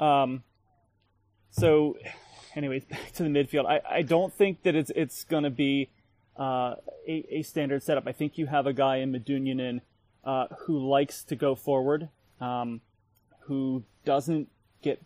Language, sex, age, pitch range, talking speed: English, male, 30-49, 120-140 Hz, 160 wpm